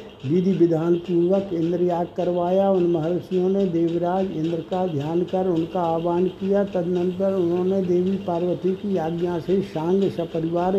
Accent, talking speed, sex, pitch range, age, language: native, 140 wpm, male, 170-190 Hz, 60-79, Hindi